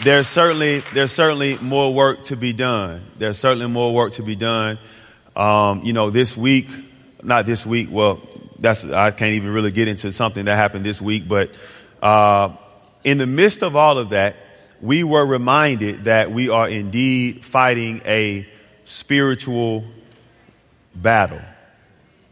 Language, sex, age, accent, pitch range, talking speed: English, male, 30-49, American, 105-130 Hz, 155 wpm